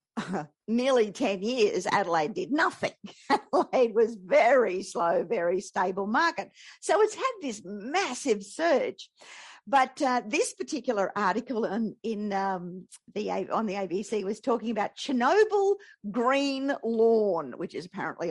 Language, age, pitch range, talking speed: English, 50-69, 205-275 Hz, 135 wpm